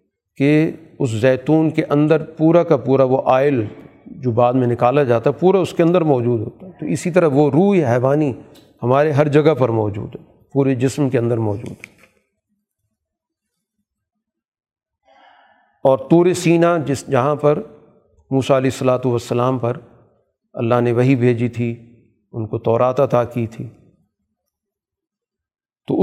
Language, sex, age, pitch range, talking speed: Urdu, male, 40-59, 120-150 Hz, 150 wpm